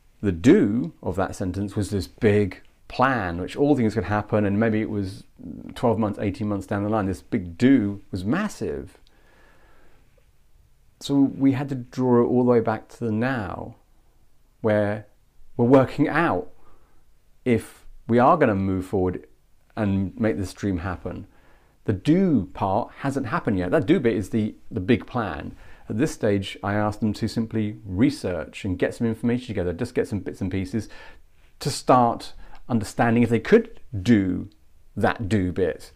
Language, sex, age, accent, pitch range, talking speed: English, male, 40-59, British, 95-120 Hz, 170 wpm